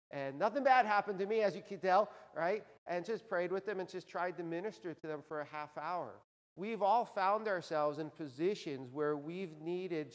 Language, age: English, 40-59